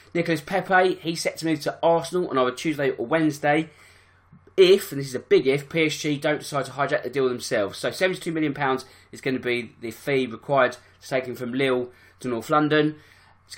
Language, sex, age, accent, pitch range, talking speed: English, male, 20-39, British, 125-150 Hz, 210 wpm